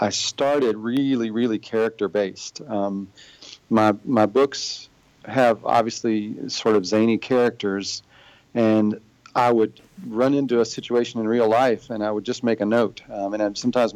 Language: English